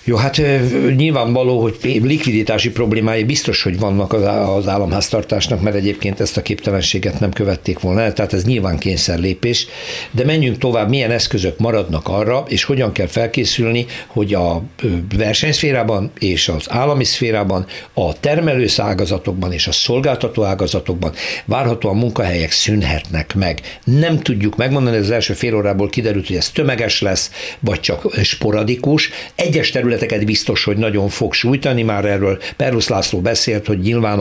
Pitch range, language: 100-125 Hz, Hungarian